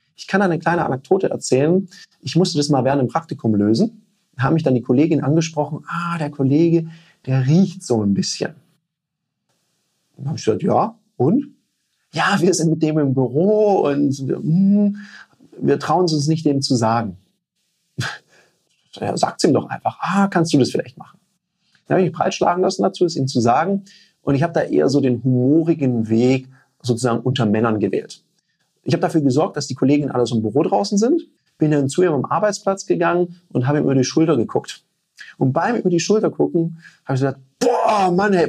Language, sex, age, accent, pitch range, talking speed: German, male, 40-59, German, 130-180 Hz, 195 wpm